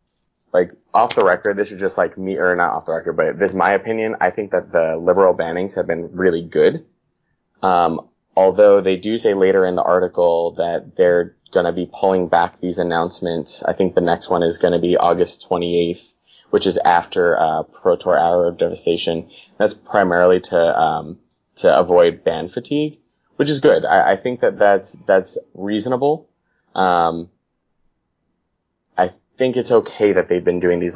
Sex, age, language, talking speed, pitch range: male, 20-39, English, 180 wpm, 85-115 Hz